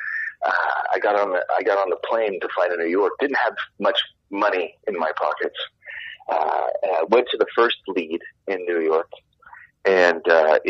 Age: 30-49